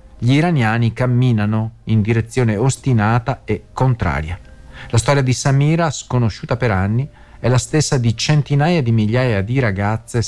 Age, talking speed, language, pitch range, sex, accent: 40-59, 140 wpm, Italian, 110-135 Hz, male, native